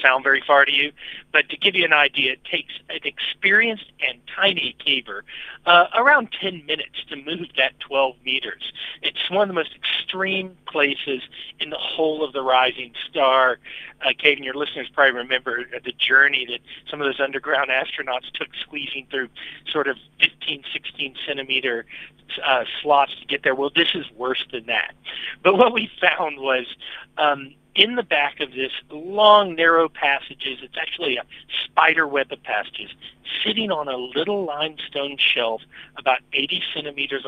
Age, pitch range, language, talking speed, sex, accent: 40-59, 130-165 Hz, English, 165 wpm, male, American